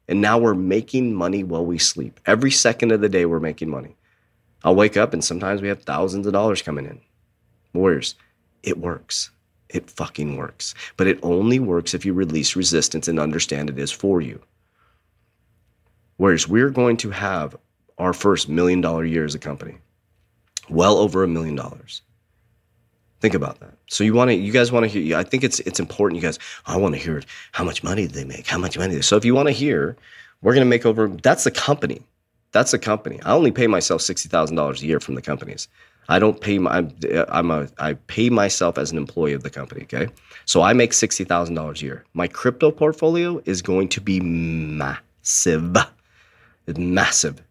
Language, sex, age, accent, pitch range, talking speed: English, male, 30-49, American, 80-110 Hz, 200 wpm